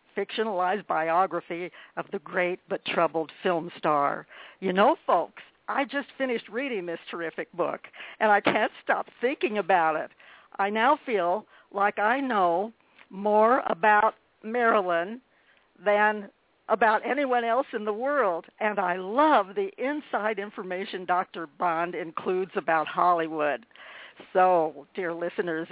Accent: American